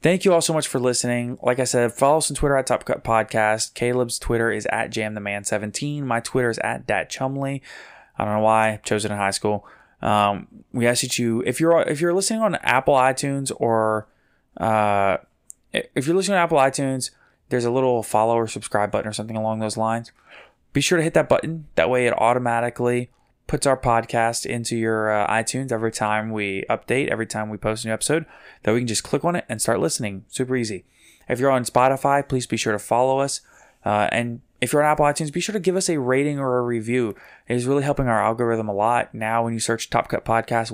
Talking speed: 225 wpm